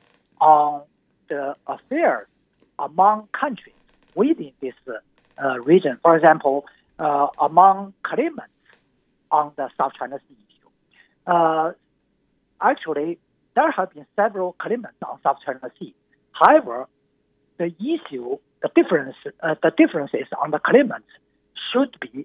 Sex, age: male, 60-79